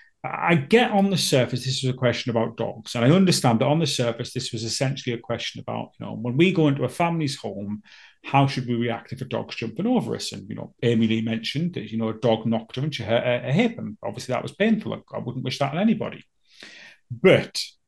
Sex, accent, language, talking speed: male, British, English, 245 wpm